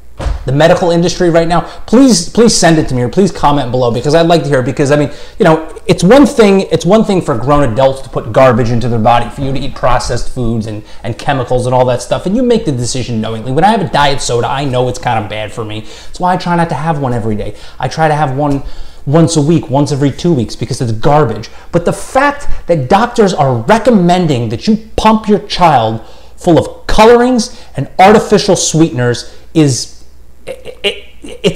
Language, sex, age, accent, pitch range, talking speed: English, male, 30-49, American, 120-170 Hz, 225 wpm